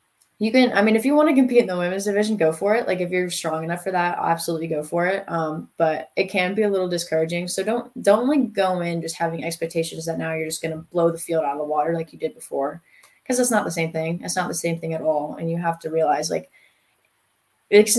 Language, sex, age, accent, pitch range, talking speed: English, female, 20-39, American, 165-195 Hz, 270 wpm